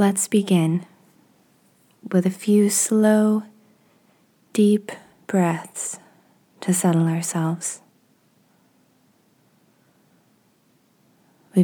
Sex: female